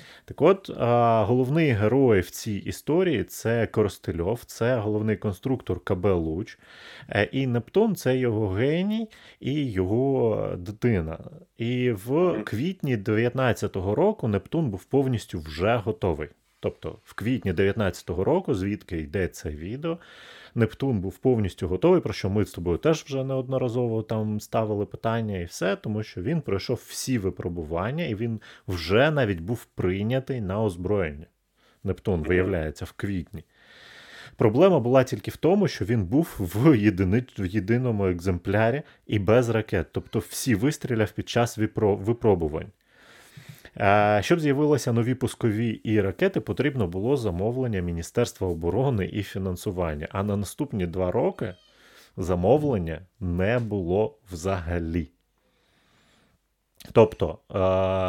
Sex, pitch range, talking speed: male, 95-125 Hz, 130 wpm